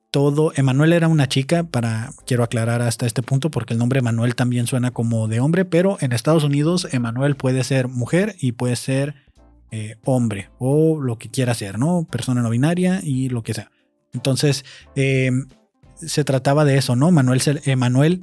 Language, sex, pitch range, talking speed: Spanish, male, 120-150 Hz, 180 wpm